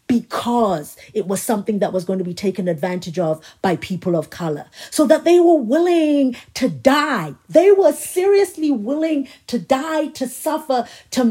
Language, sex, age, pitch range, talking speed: English, female, 40-59, 215-285 Hz, 170 wpm